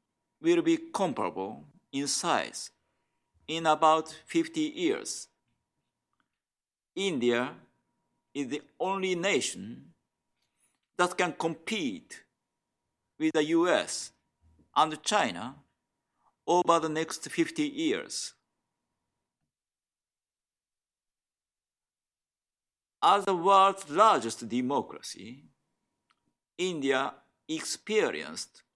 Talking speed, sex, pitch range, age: 70 wpm, male, 150-220 Hz, 50-69